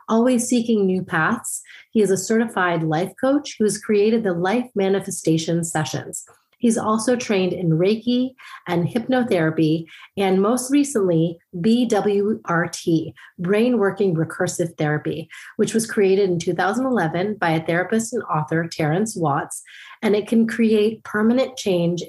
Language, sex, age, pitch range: English, female, 30-49, 170-225 Hz